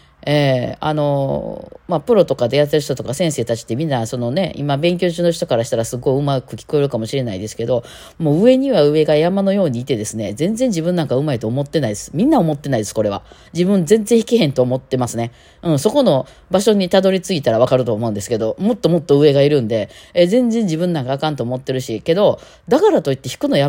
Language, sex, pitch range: Japanese, female, 130-200 Hz